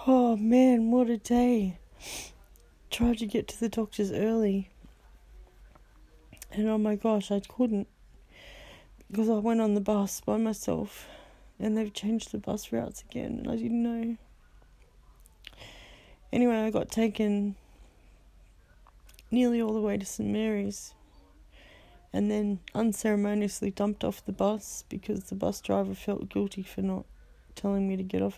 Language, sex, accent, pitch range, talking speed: English, female, Australian, 195-230 Hz, 145 wpm